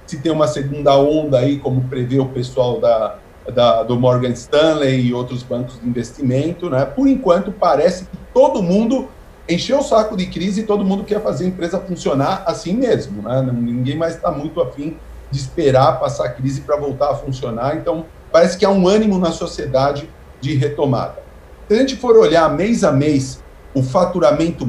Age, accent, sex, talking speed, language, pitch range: 40-59, Brazilian, male, 185 wpm, Portuguese, 135-185 Hz